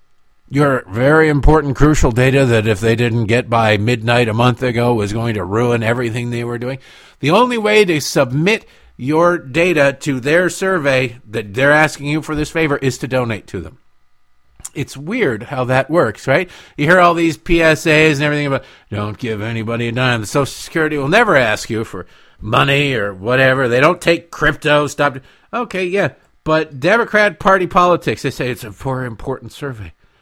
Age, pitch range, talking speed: 50-69, 110-155 Hz, 185 wpm